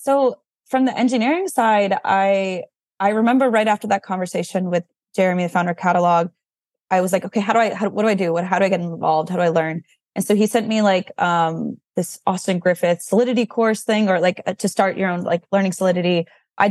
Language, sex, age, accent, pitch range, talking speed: English, female, 20-39, American, 175-205 Hz, 225 wpm